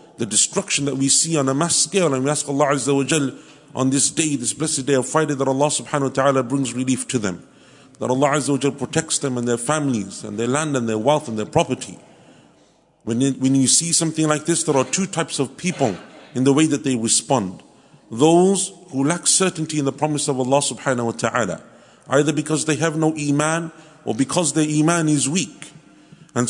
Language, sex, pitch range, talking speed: English, male, 135-170 Hz, 210 wpm